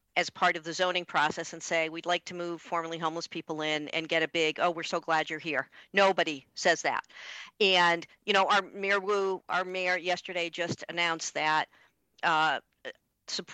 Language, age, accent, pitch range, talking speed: English, 50-69, American, 155-205 Hz, 185 wpm